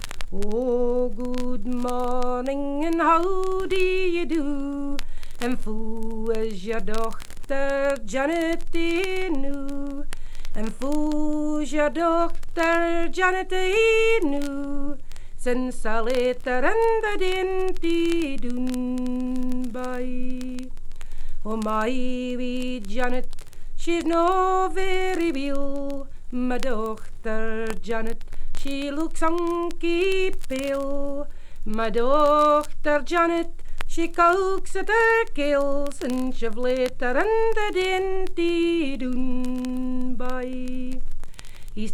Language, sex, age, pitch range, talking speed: English, female, 40-59, 250-335 Hz, 95 wpm